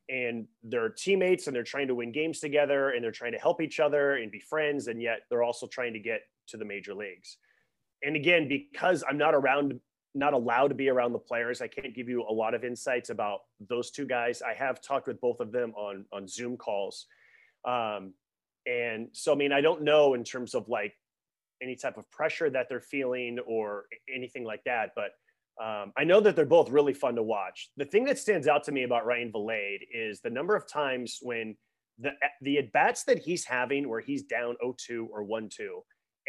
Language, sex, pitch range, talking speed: English, male, 120-160 Hz, 215 wpm